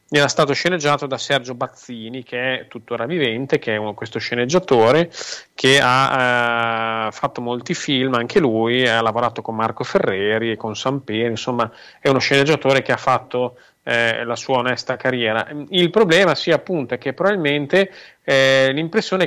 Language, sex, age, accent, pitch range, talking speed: Italian, male, 30-49, native, 115-135 Hz, 160 wpm